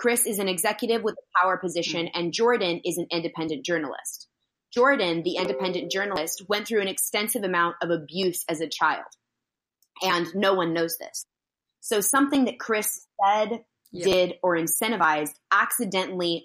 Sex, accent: female, American